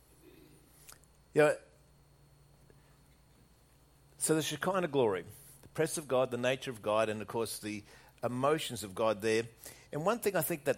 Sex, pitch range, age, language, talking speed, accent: male, 115-150 Hz, 50-69, English, 160 wpm, Australian